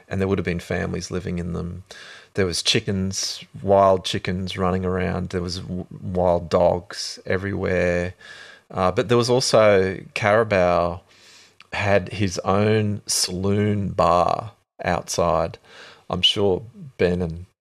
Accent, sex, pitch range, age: Australian, male, 90-105 Hz, 30-49